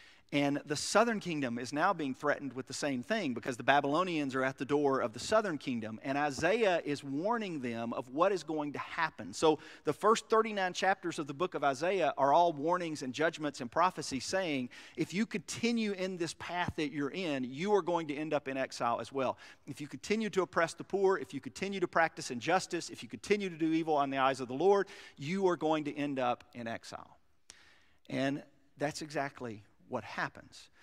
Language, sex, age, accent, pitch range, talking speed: English, male, 40-59, American, 140-190 Hz, 210 wpm